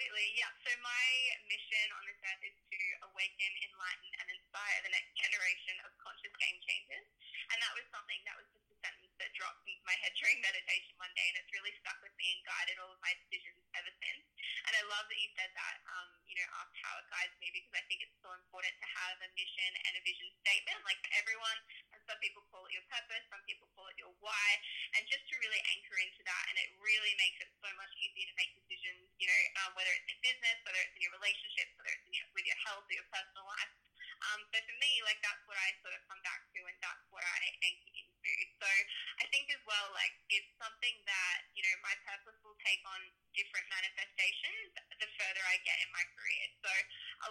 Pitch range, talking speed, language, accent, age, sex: 190-260 Hz, 230 wpm, English, Australian, 10-29, female